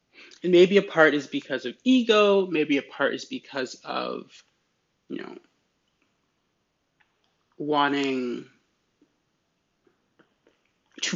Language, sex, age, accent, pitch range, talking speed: English, male, 30-49, American, 135-175 Hz, 95 wpm